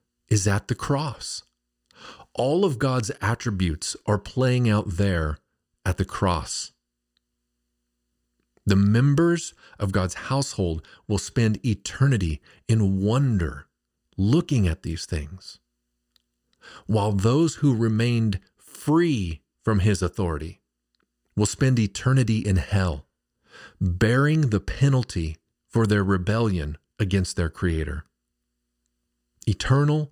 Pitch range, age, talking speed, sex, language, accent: 80-115 Hz, 40-59, 105 wpm, male, English, American